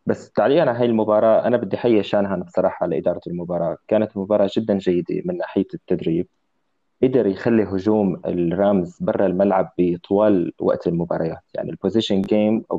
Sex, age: male, 20-39